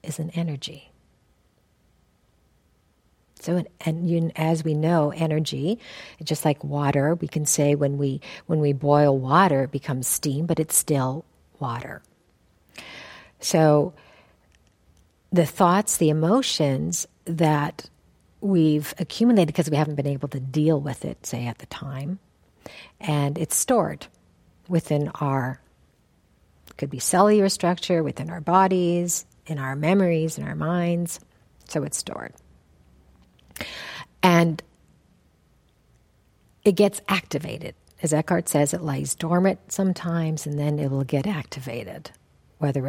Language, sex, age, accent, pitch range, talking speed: English, female, 50-69, American, 135-170 Hz, 125 wpm